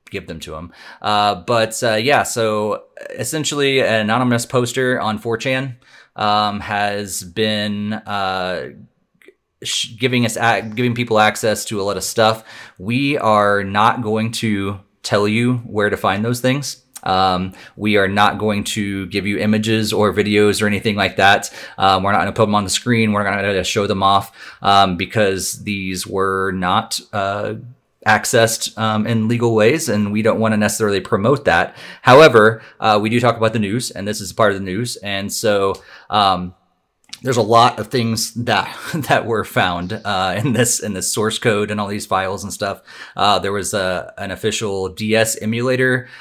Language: English